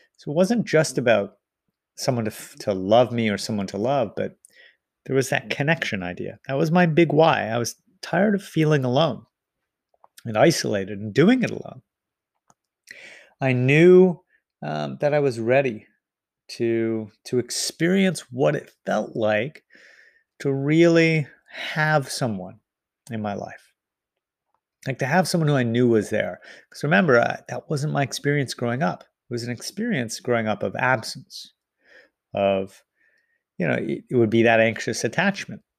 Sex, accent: male, American